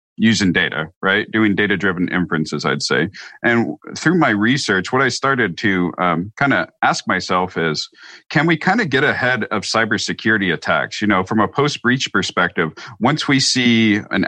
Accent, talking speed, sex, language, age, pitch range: American, 170 wpm, male, English, 40-59, 95-120 Hz